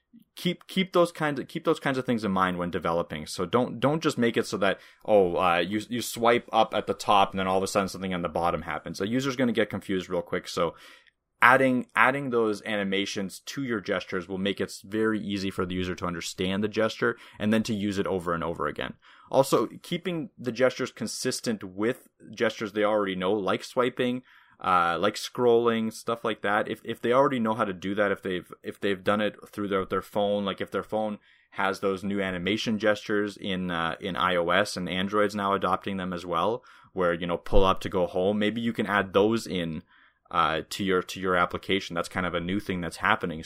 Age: 20-39